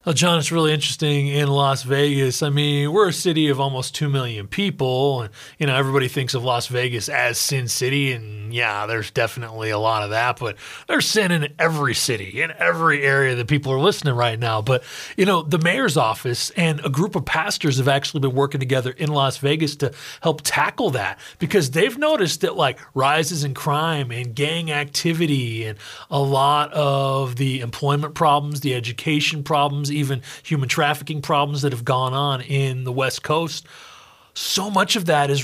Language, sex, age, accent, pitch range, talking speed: English, male, 30-49, American, 135-170 Hz, 190 wpm